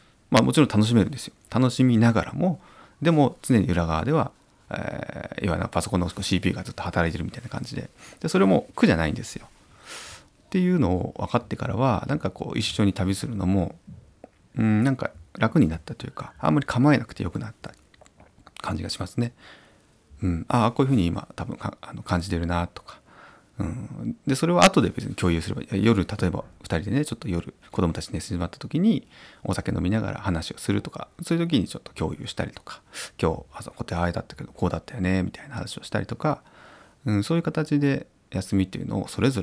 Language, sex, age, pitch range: Japanese, male, 40-59, 90-125 Hz